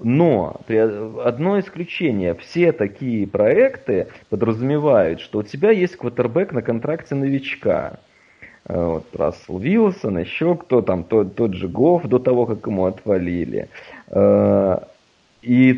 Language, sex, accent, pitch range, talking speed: Russian, male, native, 105-130 Hz, 120 wpm